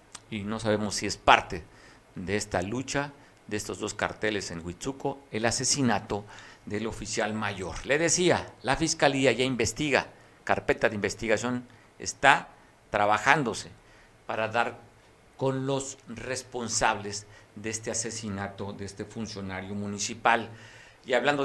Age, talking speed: 50-69, 125 wpm